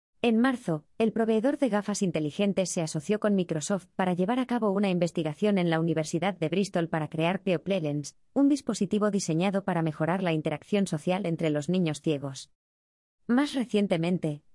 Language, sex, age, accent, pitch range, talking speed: Spanish, female, 20-39, Spanish, 160-210 Hz, 160 wpm